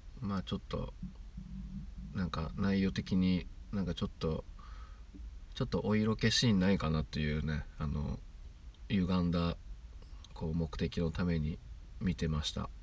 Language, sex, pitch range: Japanese, male, 70-90 Hz